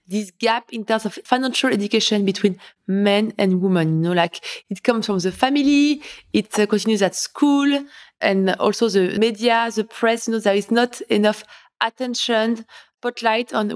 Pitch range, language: 205-245 Hz, English